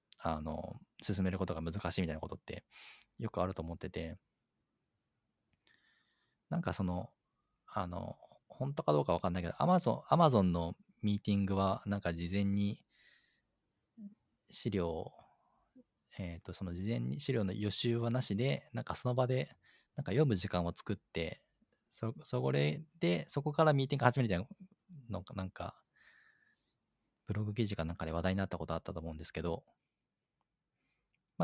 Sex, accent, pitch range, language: male, native, 90-115 Hz, Japanese